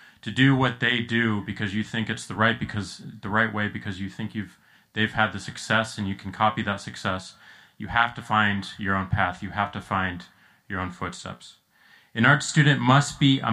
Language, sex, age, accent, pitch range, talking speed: English, male, 30-49, American, 100-125 Hz, 215 wpm